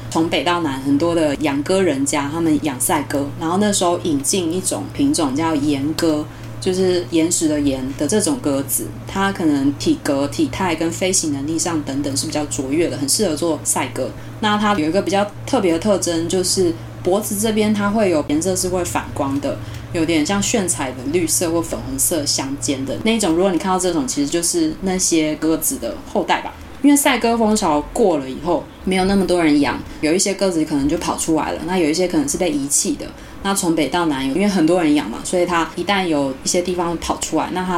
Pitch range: 150-210 Hz